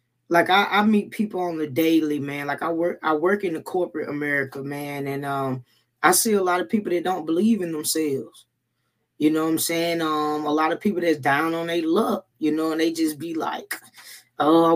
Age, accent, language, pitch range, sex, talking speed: 20-39, American, English, 140-175 Hz, female, 230 wpm